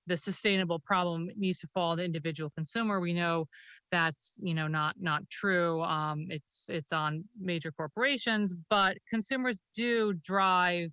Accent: American